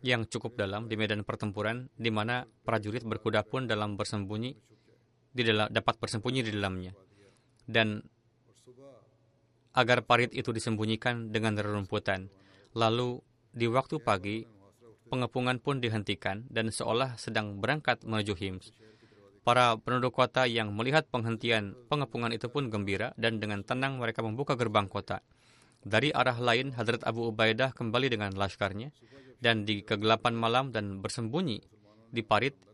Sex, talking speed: male, 135 wpm